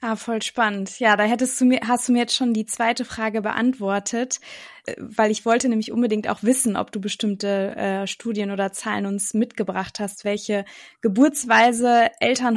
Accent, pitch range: German, 215-250 Hz